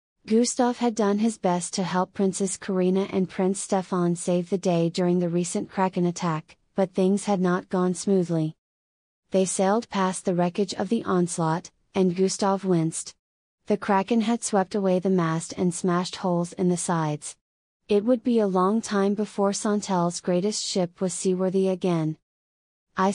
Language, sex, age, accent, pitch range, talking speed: English, female, 30-49, American, 175-205 Hz, 165 wpm